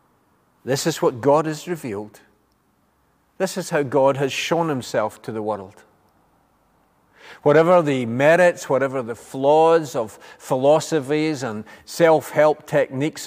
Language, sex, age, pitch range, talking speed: English, male, 50-69, 120-165 Hz, 120 wpm